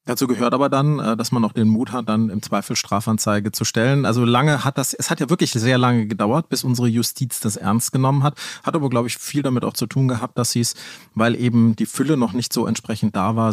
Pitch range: 110-135 Hz